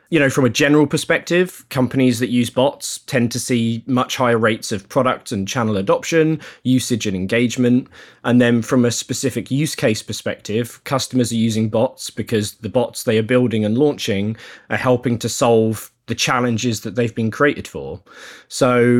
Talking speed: 175 wpm